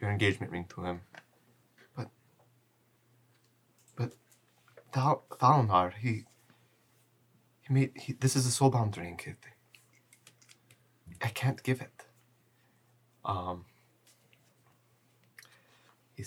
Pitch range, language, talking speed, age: 95-120 Hz, English, 90 wpm, 20-39